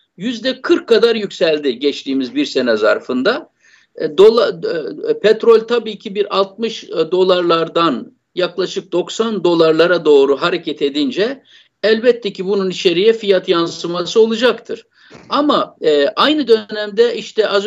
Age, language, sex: 50-69, Turkish, male